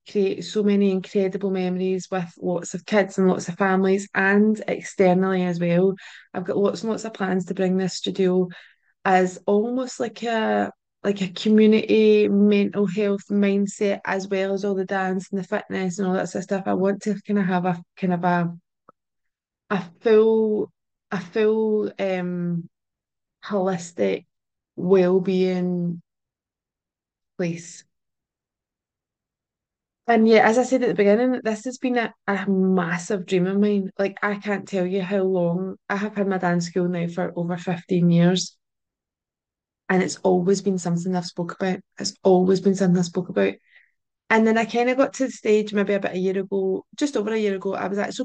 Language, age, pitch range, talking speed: English, 20-39, 185-210 Hz, 180 wpm